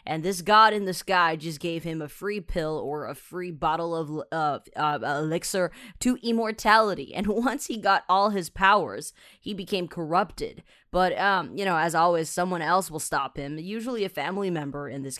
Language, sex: Chinese, female